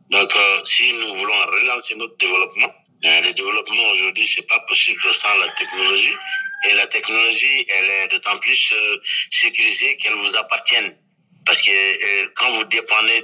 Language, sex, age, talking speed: French, male, 50-69, 165 wpm